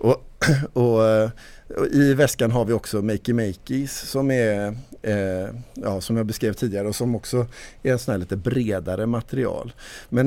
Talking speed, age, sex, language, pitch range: 170 wpm, 50-69, male, Swedish, 100-120 Hz